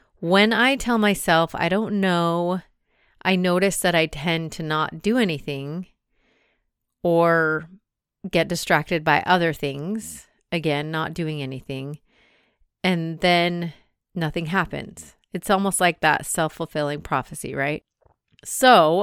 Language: English